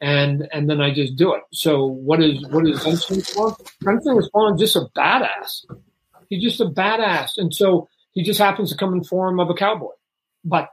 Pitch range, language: 160-190 Hz, English